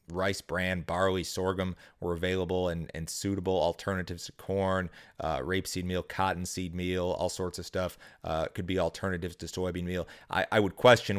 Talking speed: 170 wpm